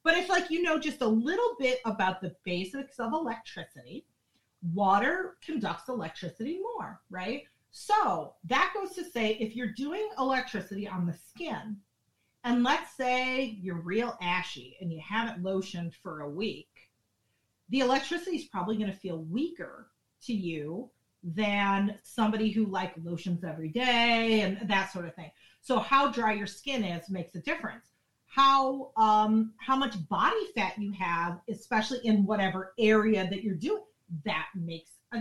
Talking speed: 160 wpm